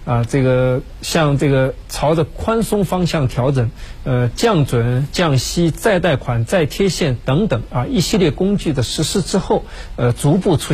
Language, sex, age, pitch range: Chinese, male, 50-69, 125-170 Hz